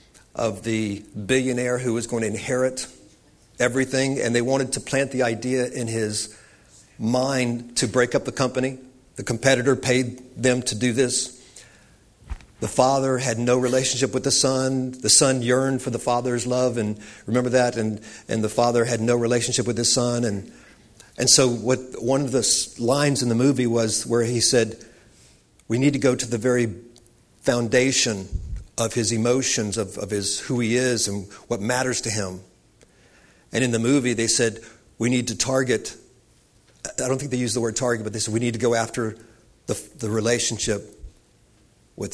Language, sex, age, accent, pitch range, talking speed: English, male, 50-69, American, 115-130 Hz, 180 wpm